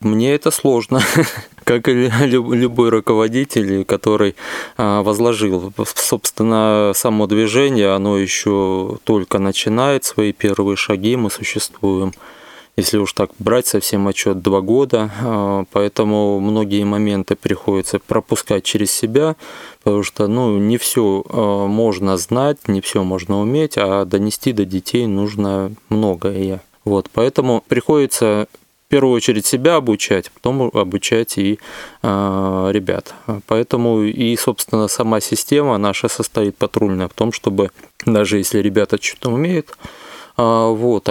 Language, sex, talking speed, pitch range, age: Russian, male, 120 wpm, 100-120 Hz, 20-39